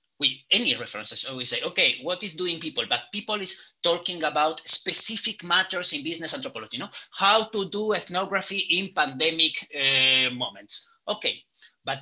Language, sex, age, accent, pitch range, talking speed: English, male, 30-49, Spanish, 130-195 Hz, 165 wpm